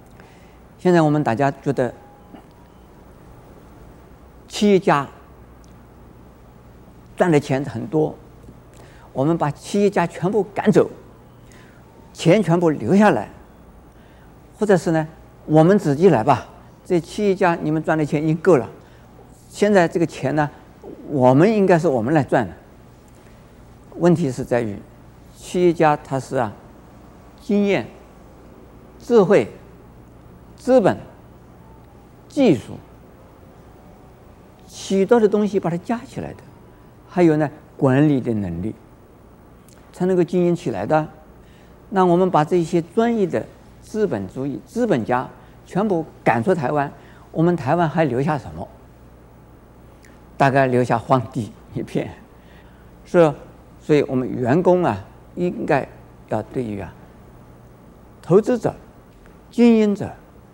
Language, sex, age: Chinese, male, 50-69